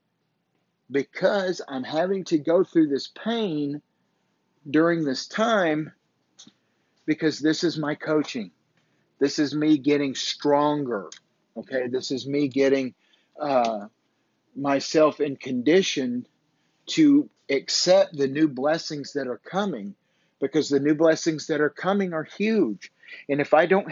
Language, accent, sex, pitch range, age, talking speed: English, American, male, 145-180 Hz, 50-69, 130 wpm